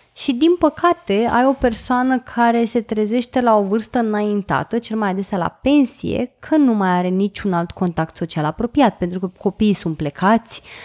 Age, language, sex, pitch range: 20-39, Romanian, female, 190-255 Hz